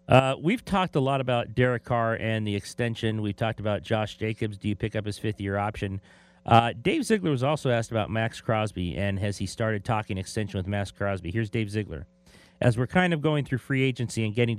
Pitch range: 100-125 Hz